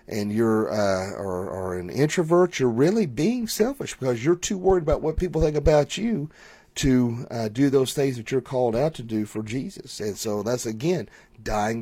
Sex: male